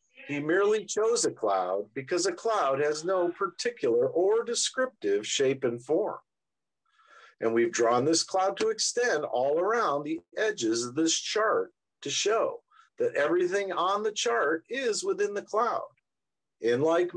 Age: 50-69